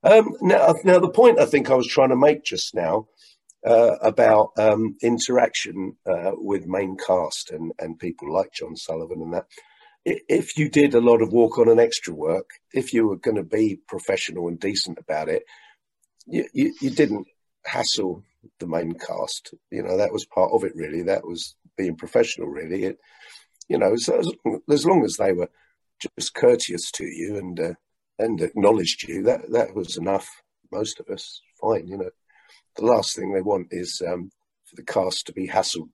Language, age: English, 50-69